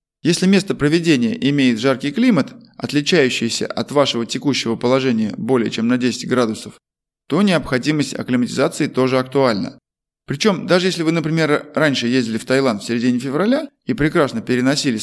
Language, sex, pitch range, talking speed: Russian, male, 130-185 Hz, 145 wpm